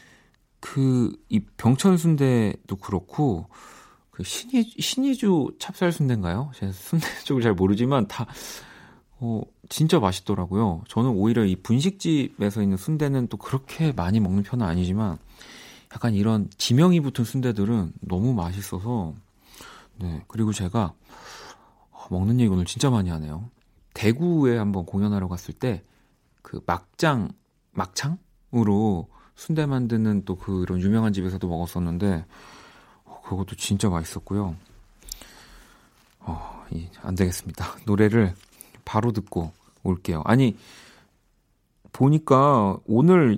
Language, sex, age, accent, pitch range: Korean, male, 40-59, native, 95-130 Hz